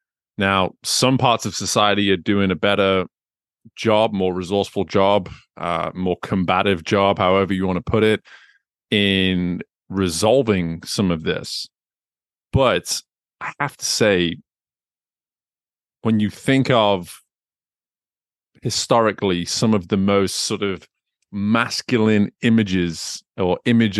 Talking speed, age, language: 120 wpm, 30-49, English